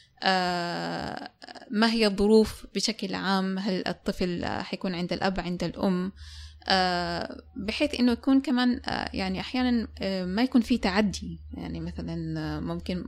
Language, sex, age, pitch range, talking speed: Arabic, female, 20-39, 170-225 Hz, 140 wpm